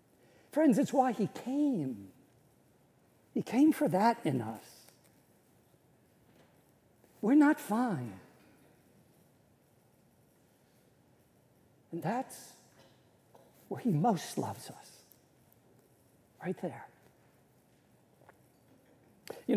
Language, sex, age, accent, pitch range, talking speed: English, male, 60-79, American, 155-230 Hz, 75 wpm